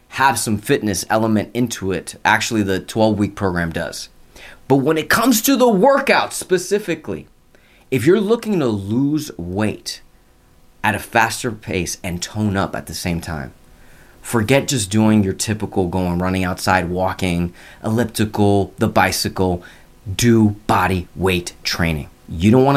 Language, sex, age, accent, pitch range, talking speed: English, male, 20-39, American, 95-125 Hz, 145 wpm